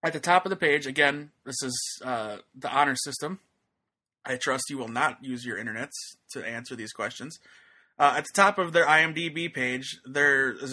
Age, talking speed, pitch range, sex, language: 20-39, 195 wpm, 130-150 Hz, male, English